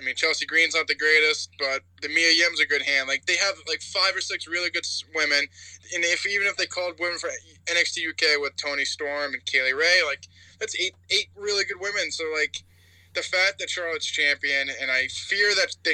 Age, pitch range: 20-39, 130-175 Hz